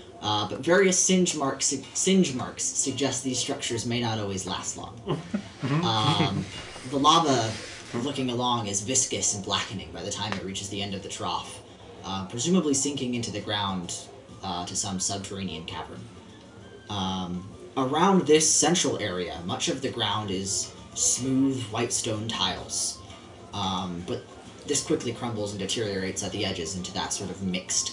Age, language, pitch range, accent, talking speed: 30-49, English, 95-125 Hz, American, 160 wpm